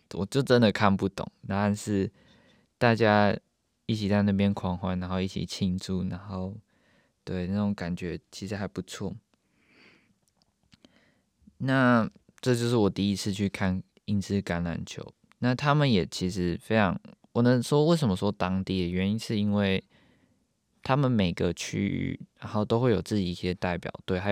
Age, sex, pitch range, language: 20-39, male, 95-115 Hz, Chinese